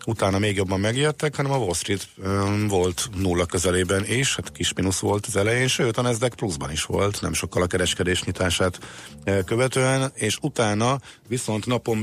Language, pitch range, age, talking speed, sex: Hungarian, 90-110 Hz, 50-69, 175 wpm, male